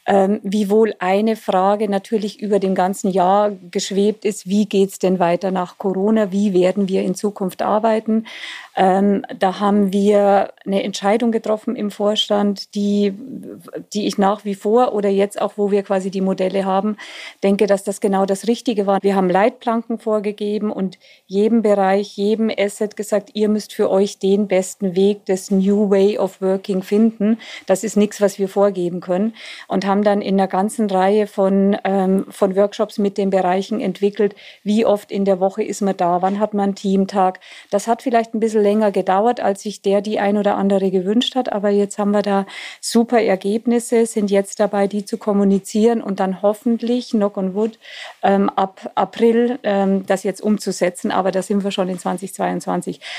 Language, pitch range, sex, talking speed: German, 195-215 Hz, female, 185 wpm